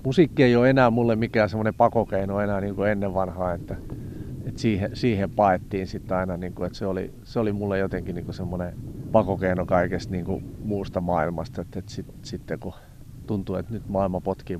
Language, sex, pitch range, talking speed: Finnish, male, 95-115 Hz, 175 wpm